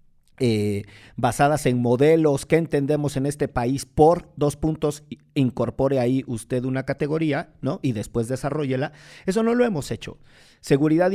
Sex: male